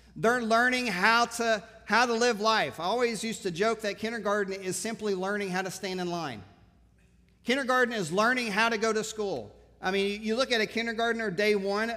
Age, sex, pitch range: 40-59, male, 190-225 Hz